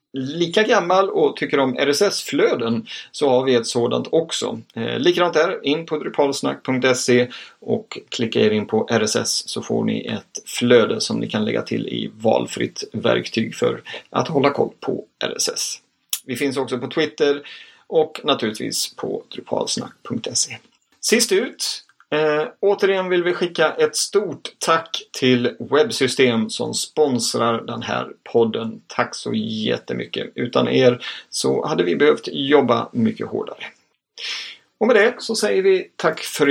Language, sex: Swedish, male